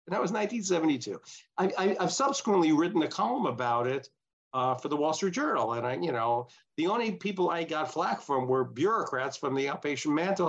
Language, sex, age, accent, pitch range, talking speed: English, male, 50-69, American, 135-190 Hz, 190 wpm